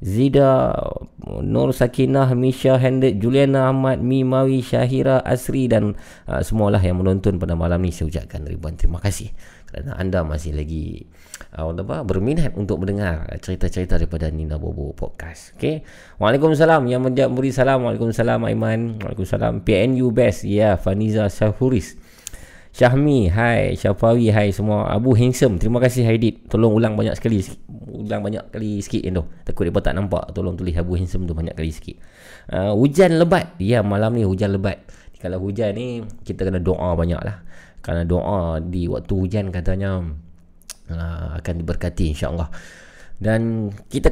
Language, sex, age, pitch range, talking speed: Malay, male, 20-39, 90-120 Hz, 150 wpm